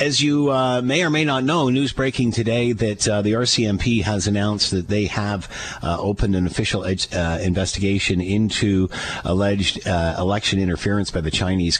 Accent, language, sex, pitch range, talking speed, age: American, English, male, 90-115 Hz, 175 wpm, 50-69